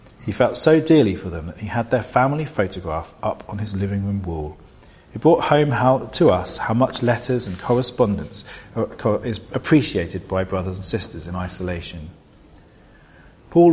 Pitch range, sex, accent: 95-130 Hz, male, British